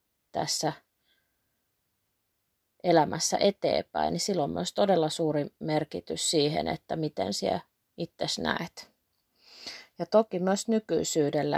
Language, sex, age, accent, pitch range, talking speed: Finnish, female, 30-49, native, 150-170 Hz, 105 wpm